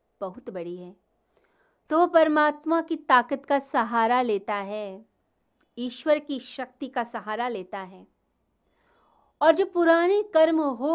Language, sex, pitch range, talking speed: Hindi, female, 210-265 Hz, 125 wpm